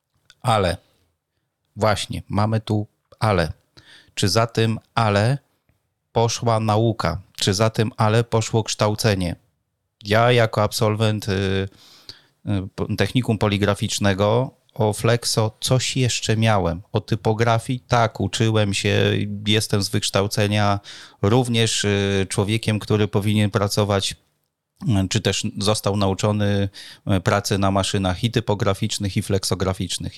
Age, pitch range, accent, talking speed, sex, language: 30-49, 100-110 Hz, native, 100 wpm, male, Polish